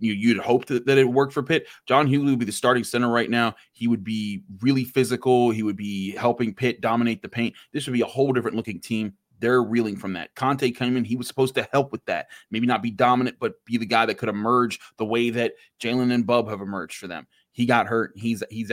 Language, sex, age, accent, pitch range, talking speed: English, male, 30-49, American, 105-125 Hz, 245 wpm